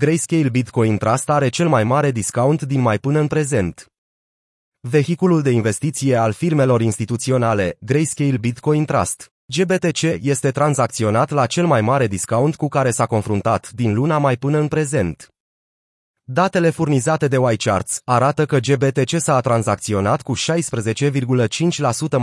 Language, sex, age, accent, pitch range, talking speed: Romanian, male, 30-49, native, 120-150 Hz, 140 wpm